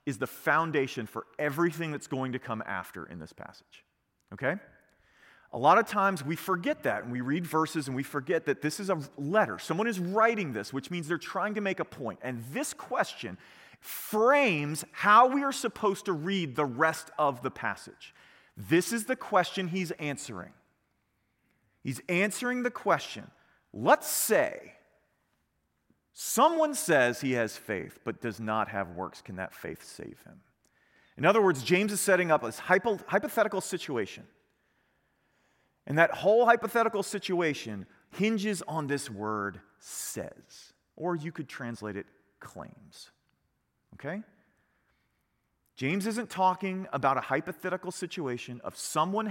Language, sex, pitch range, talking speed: English, male, 130-195 Hz, 150 wpm